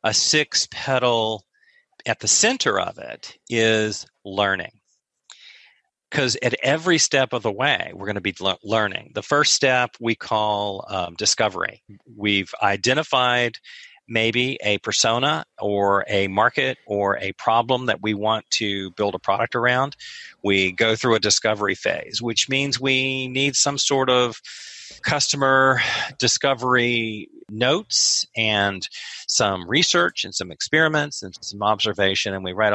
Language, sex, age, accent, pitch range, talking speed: English, male, 40-59, American, 100-125 Hz, 140 wpm